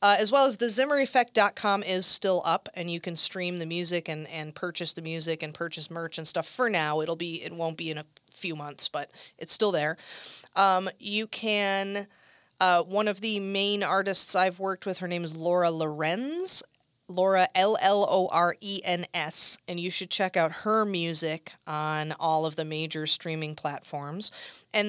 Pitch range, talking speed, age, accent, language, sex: 170-210 Hz, 175 wpm, 30-49, American, English, female